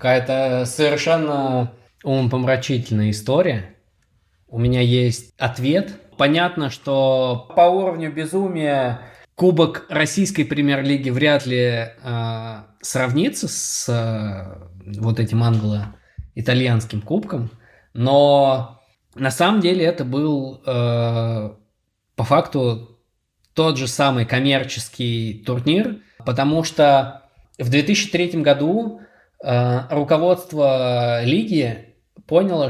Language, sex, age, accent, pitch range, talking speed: Russian, male, 20-39, native, 115-145 Hz, 90 wpm